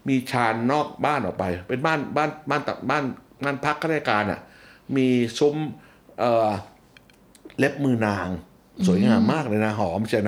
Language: Thai